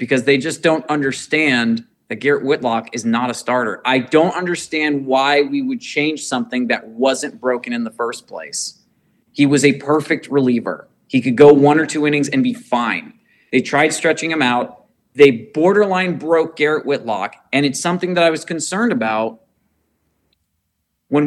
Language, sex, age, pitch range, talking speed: English, male, 30-49, 135-170 Hz, 170 wpm